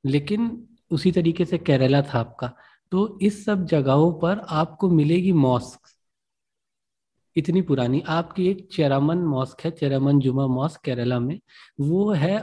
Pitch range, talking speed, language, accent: 130-175 Hz, 140 wpm, Hindi, native